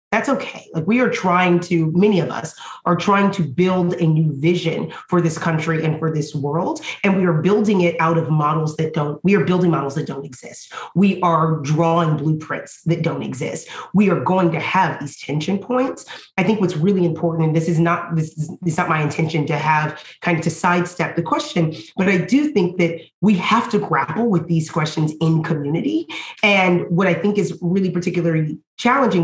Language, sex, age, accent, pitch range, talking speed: English, female, 30-49, American, 165-215 Hz, 205 wpm